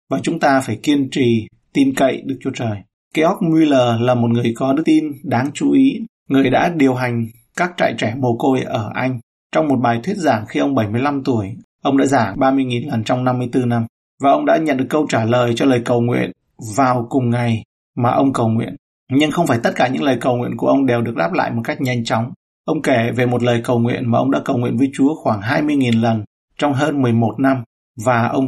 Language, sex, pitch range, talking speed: Vietnamese, male, 115-140 Hz, 235 wpm